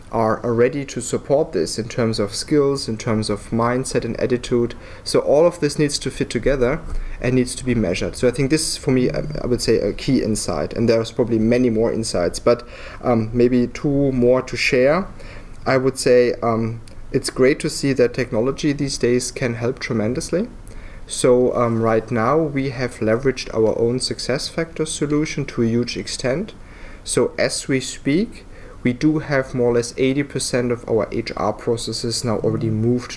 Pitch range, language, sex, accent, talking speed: 110-130 Hz, English, male, German, 185 wpm